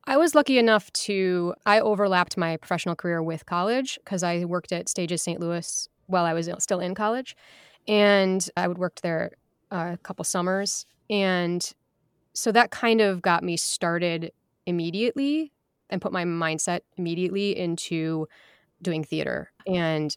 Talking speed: 150 wpm